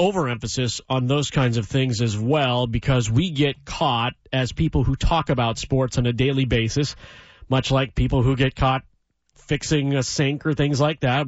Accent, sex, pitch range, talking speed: American, male, 125-160 Hz, 185 wpm